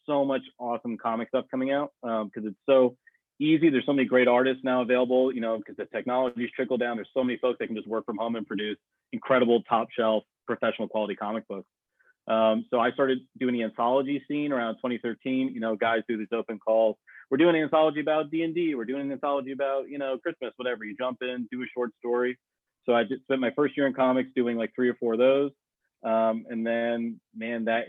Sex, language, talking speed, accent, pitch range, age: male, English, 225 wpm, American, 110-130 Hz, 30-49